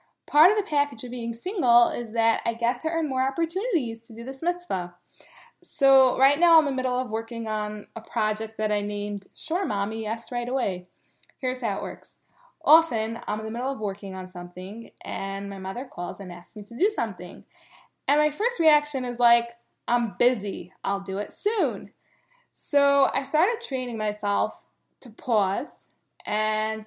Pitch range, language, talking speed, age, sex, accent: 215-295 Hz, English, 185 wpm, 10-29, female, American